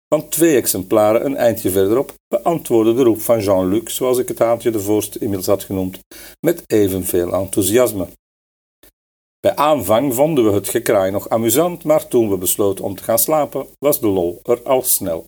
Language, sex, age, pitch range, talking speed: Dutch, male, 50-69, 100-155 Hz, 175 wpm